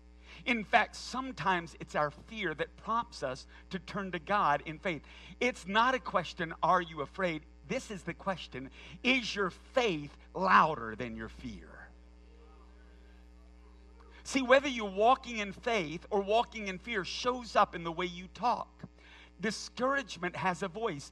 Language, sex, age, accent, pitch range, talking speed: English, male, 50-69, American, 155-225 Hz, 155 wpm